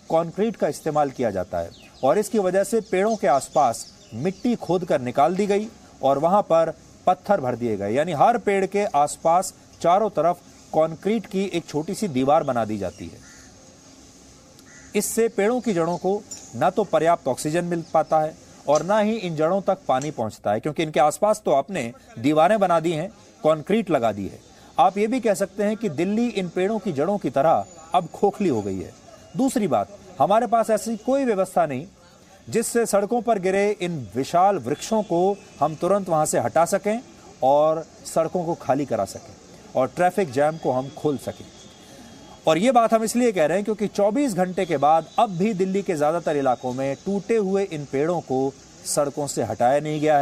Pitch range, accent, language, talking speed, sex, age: 135-205 Hz, Indian, English, 145 wpm, male, 40-59